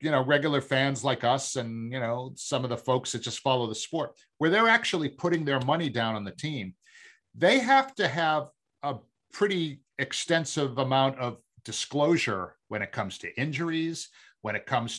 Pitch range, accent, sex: 125-160 Hz, American, male